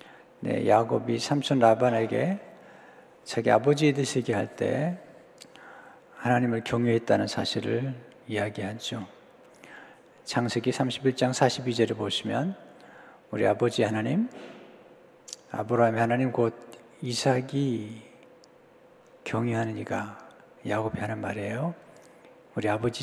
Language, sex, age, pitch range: Korean, male, 60-79, 115-135 Hz